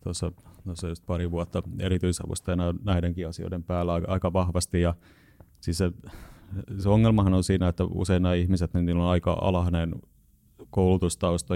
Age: 30-49